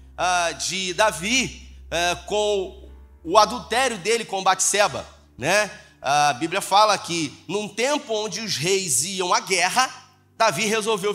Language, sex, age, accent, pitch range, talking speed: Portuguese, male, 30-49, Brazilian, 170-225 Hz, 125 wpm